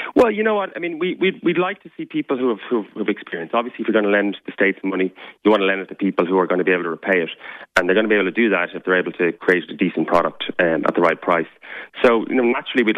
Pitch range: 95-115 Hz